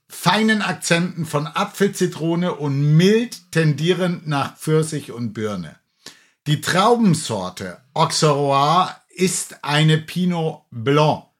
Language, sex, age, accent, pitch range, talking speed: German, male, 60-79, German, 145-180 Hz, 95 wpm